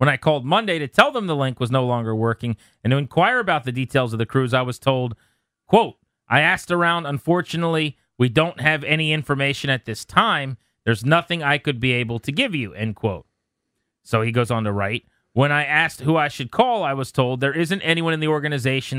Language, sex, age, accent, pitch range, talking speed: English, male, 30-49, American, 120-155 Hz, 225 wpm